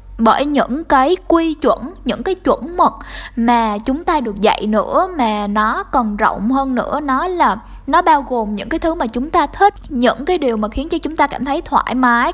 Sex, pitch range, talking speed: female, 215-290 Hz, 220 wpm